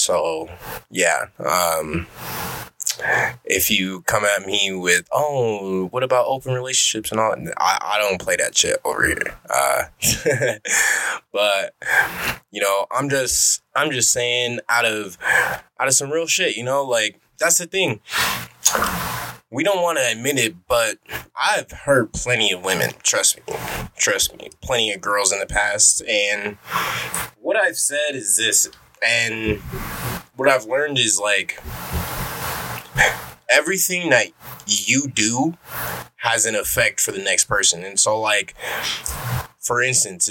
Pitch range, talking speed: 110-165 Hz, 145 wpm